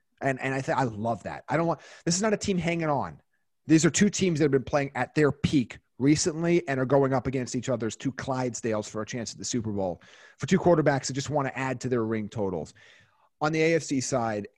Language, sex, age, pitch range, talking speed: English, male, 30-49, 115-150 Hz, 250 wpm